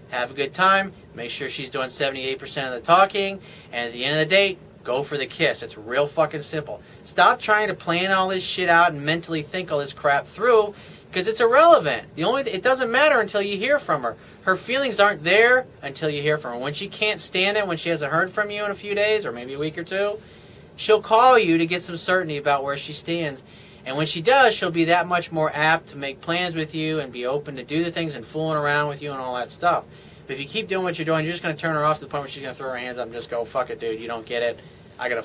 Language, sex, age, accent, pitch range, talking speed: English, male, 40-59, American, 145-190 Hz, 285 wpm